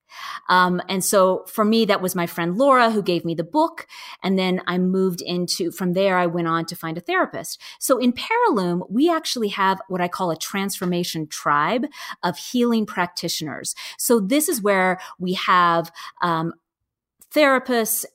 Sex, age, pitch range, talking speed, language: female, 30-49, 175-225 Hz, 170 wpm, English